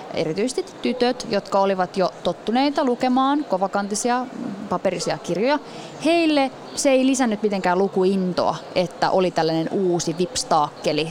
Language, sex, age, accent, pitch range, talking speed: Finnish, female, 20-39, native, 180-260 Hz, 115 wpm